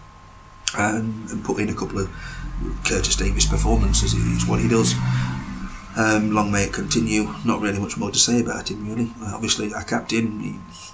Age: 30-49